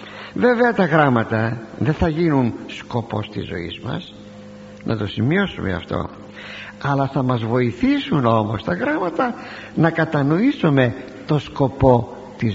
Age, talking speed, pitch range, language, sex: 60-79, 125 wpm, 105-165 Hz, Greek, male